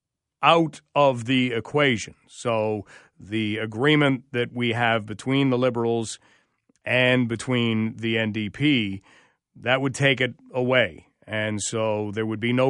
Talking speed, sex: 130 wpm, male